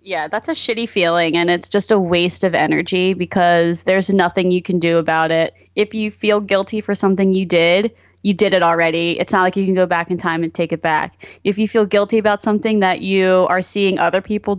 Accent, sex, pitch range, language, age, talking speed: American, female, 175-210 Hz, English, 20-39, 235 wpm